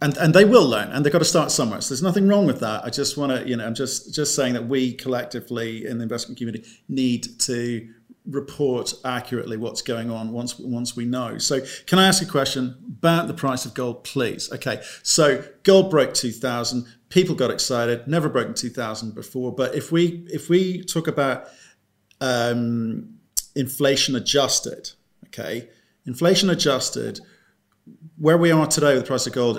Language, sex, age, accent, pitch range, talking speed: English, male, 40-59, British, 120-150 Hz, 190 wpm